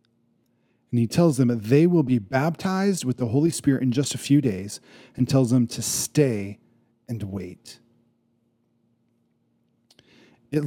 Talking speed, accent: 145 wpm, American